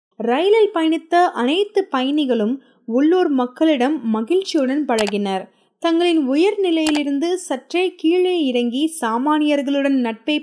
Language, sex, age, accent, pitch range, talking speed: Tamil, female, 20-39, native, 240-320 Hz, 90 wpm